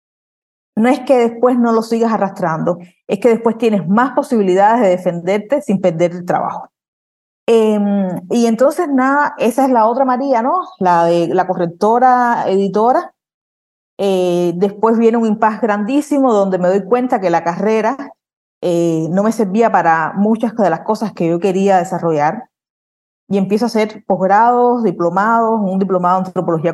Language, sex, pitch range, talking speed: Spanish, female, 175-225 Hz, 160 wpm